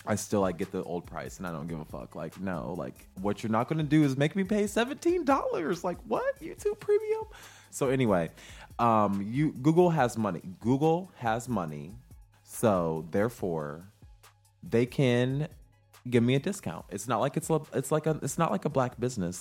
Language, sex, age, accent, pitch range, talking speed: English, male, 20-39, American, 95-140 Hz, 200 wpm